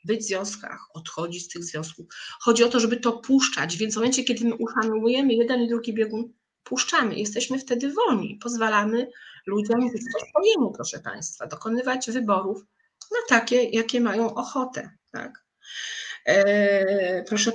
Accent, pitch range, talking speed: native, 200-245 Hz, 145 wpm